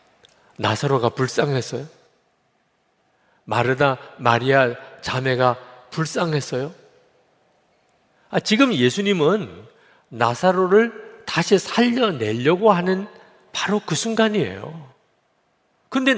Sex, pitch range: male, 155-240 Hz